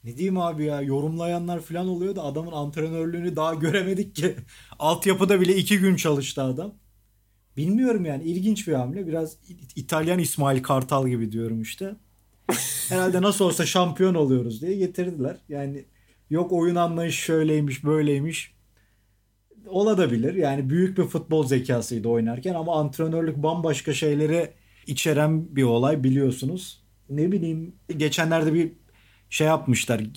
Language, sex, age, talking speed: Turkish, male, 40-59, 130 wpm